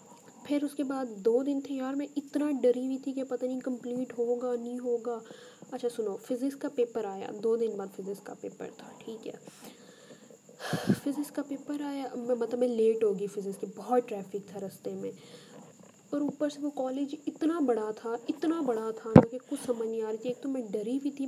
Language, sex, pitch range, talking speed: Urdu, female, 230-270 Hz, 210 wpm